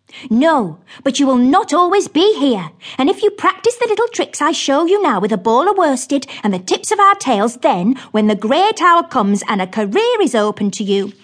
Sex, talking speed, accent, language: female, 230 wpm, British, English